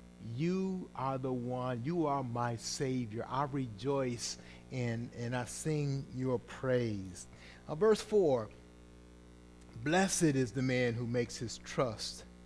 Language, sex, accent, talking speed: English, male, American, 130 wpm